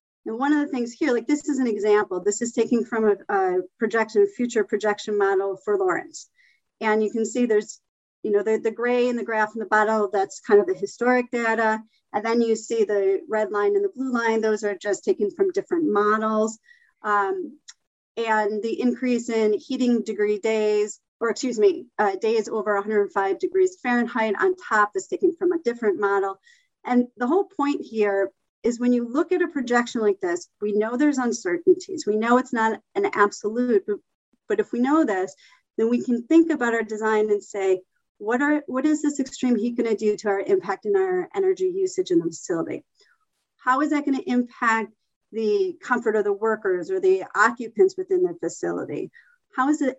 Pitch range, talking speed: 215-335 Hz, 195 wpm